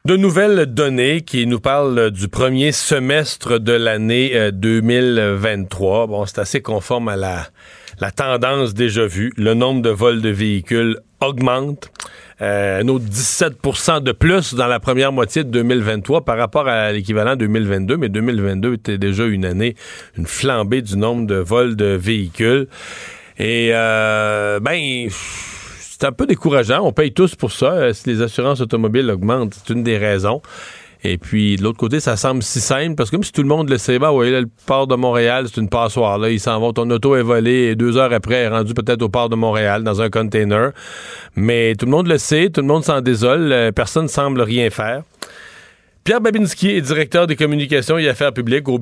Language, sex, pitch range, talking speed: French, male, 110-135 Hz, 195 wpm